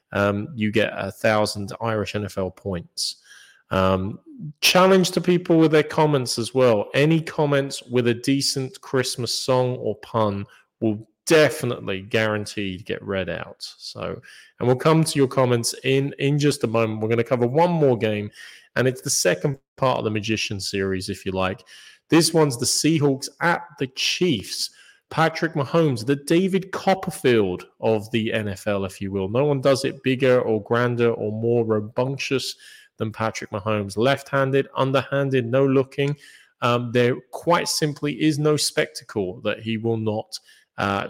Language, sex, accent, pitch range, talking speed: English, male, British, 110-155 Hz, 160 wpm